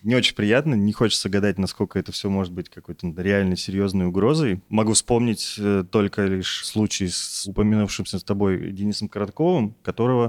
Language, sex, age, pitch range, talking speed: Russian, male, 20-39, 95-115 Hz, 155 wpm